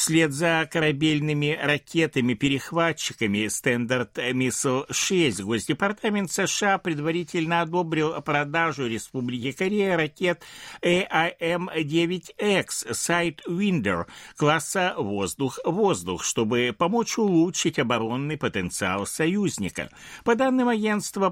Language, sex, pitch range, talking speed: Russian, male, 120-175 Hz, 80 wpm